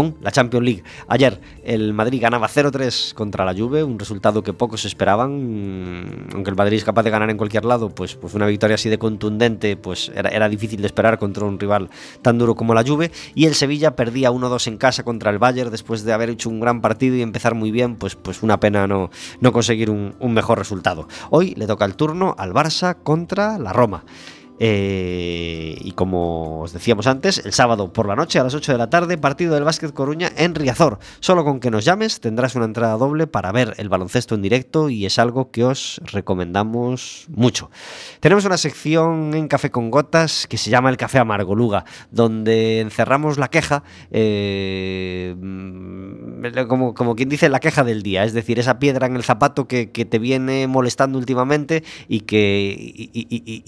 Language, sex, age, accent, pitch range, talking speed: Spanish, male, 20-39, Spanish, 105-130 Hz, 195 wpm